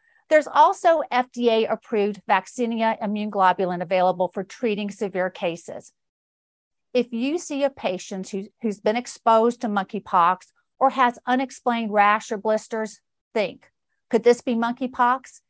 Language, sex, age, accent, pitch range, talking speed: English, female, 40-59, American, 195-260 Hz, 130 wpm